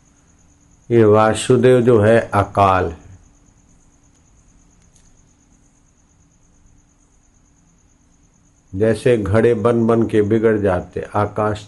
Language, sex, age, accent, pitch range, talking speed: Hindi, male, 50-69, native, 90-115 Hz, 70 wpm